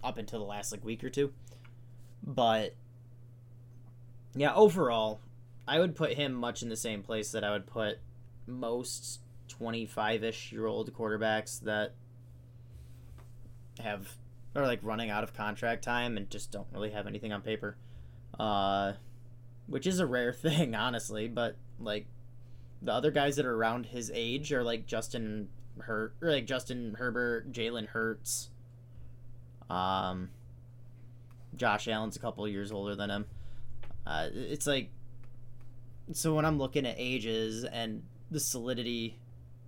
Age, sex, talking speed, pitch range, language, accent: 20-39, male, 140 wpm, 110-120 Hz, English, American